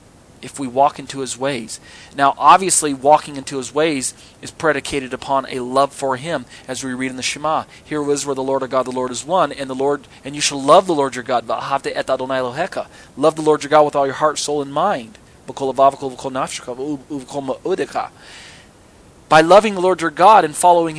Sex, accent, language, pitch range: male, American, English, 125-155 Hz